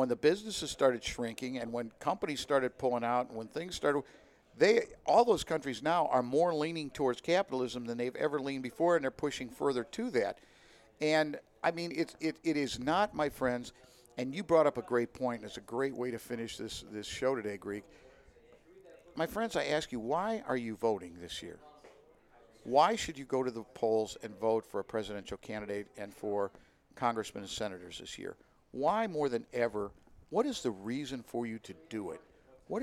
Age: 50-69